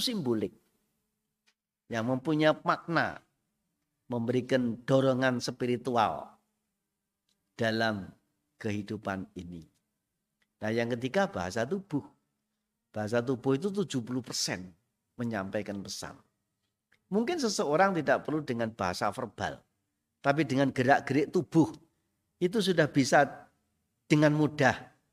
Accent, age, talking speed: native, 50-69, 90 wpm